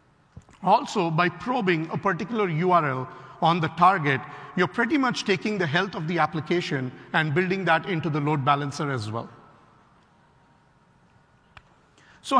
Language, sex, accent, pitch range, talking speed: English, male, Indian, 155-195 Hz, 135 wpm